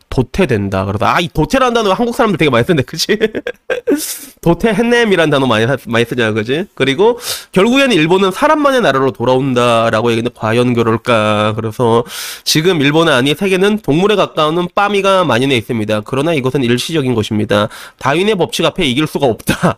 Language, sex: Korean, male